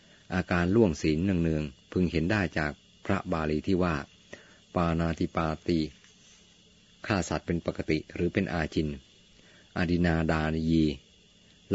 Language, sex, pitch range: Thai, male, 80-95 Hz